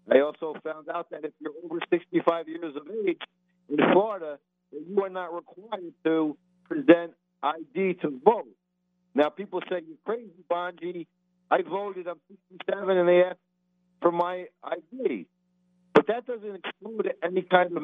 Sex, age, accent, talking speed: male, 60-79, American, 155 wpm